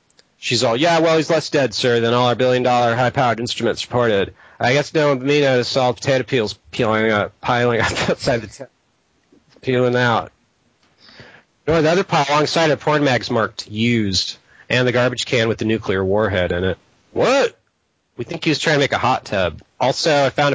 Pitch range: 110-145 Hz